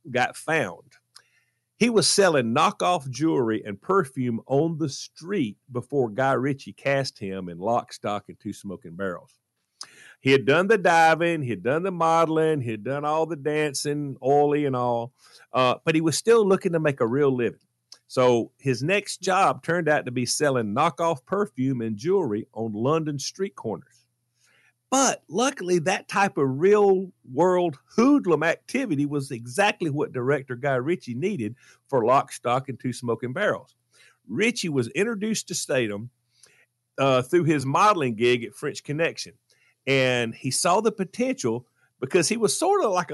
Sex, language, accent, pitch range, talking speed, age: male, English, American, 125-175 Hz, 160 wpm, 50-69